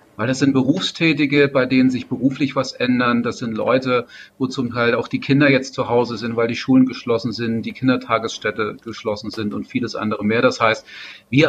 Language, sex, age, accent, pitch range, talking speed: German, male, 40-59, German, 115-135 Hz, 205 wpm